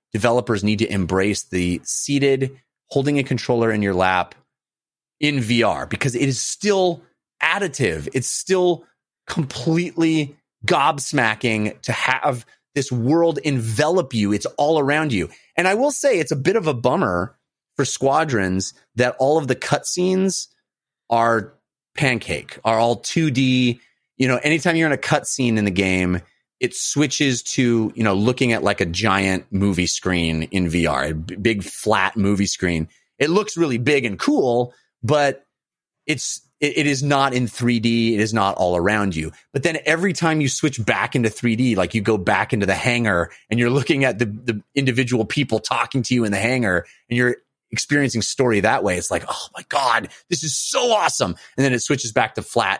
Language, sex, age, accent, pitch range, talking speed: English, male, 30-49, American, 105-140 Hz, 180 wpm